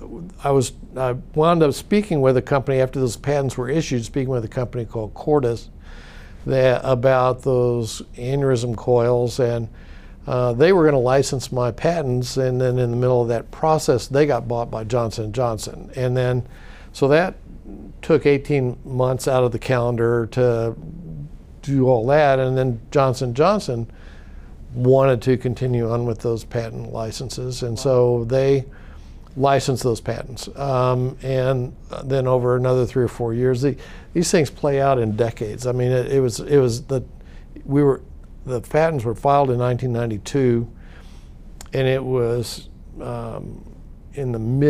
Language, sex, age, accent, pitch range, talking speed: English, male, 60-79, American, 115-135 Hz, 155 wpm